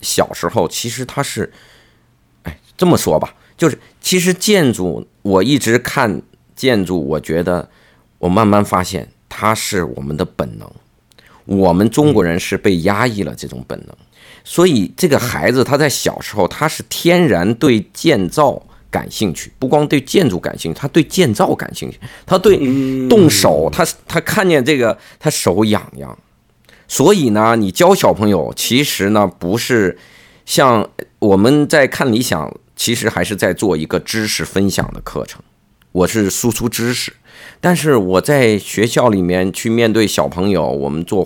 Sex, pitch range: male, 90-125 Hz